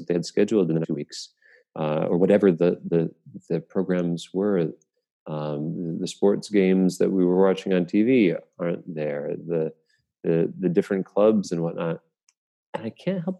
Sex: male